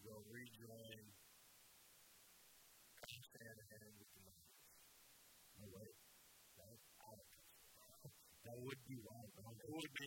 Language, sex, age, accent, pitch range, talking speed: English, male, 50-69, American, 105-140 Hz, 100 wpm